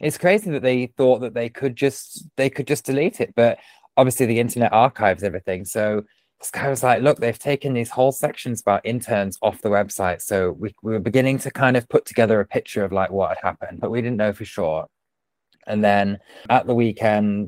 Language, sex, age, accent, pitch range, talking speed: English, male, 20-39, British, 100-120 Hz, 220 wpm